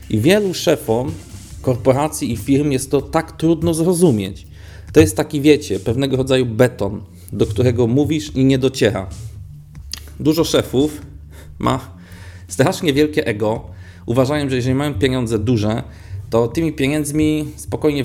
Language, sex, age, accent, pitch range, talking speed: Polish, male, 40-59, native, 100-135 Hz, 135 wpm